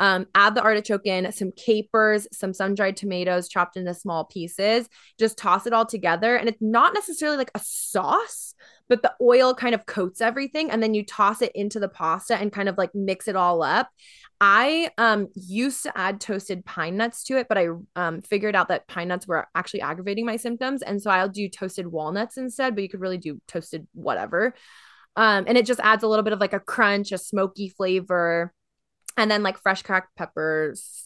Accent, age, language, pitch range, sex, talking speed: American, 20-39, English, 185-240 Hz, female, 205 wpm